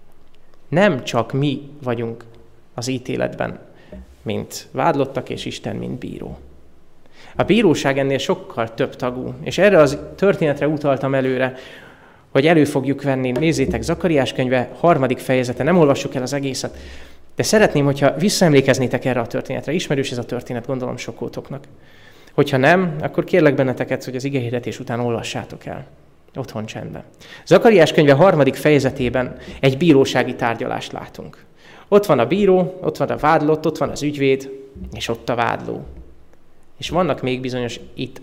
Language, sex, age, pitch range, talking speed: Hungarian, male, 20-39, 115-145 Hz, 150 wpm